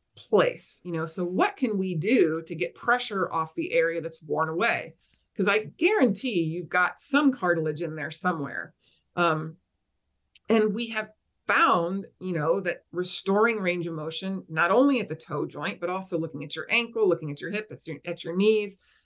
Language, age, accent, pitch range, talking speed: English, 30-49, American, 160-215 Hz, 190 wpm